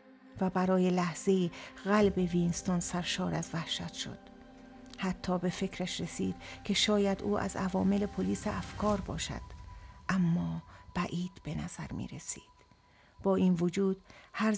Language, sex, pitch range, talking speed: Persian, female, 175-200 Hz, 125 wpm